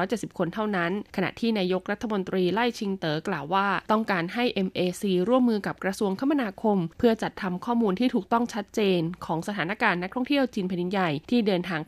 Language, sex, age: Thai, female, 20-39